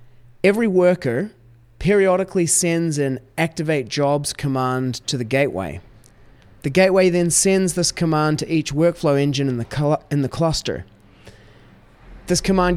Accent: Australian